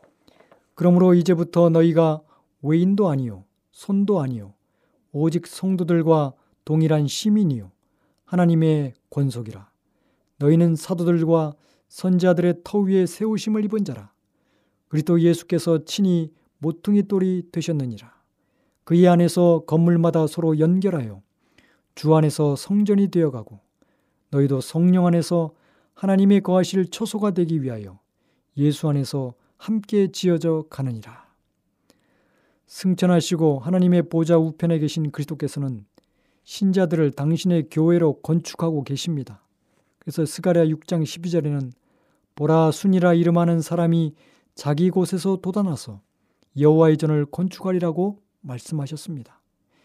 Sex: male